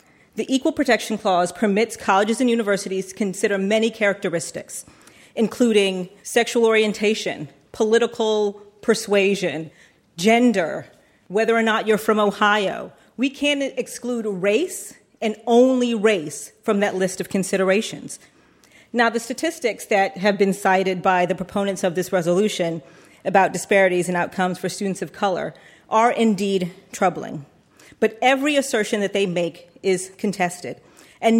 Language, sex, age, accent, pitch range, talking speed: English, female, 40-59, American, 185-225 Hz, 130 wpm